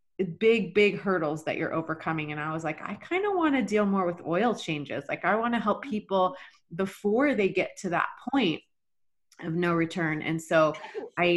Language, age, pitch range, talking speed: English, 30-49, 170-235 Hz, 200 wpm